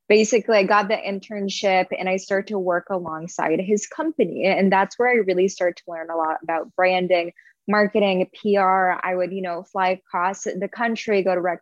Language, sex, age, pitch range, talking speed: English, female, 20-39, 180-210 Hz, 195 wpm